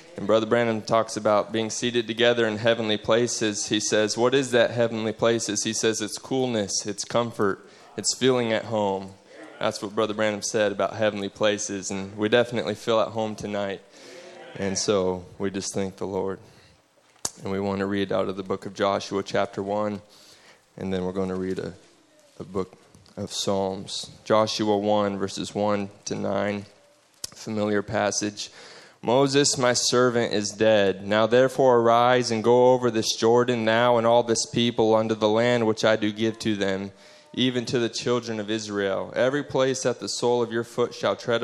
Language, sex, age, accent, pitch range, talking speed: English, male, 20-39, American, 105-120 Hz, 180 wpm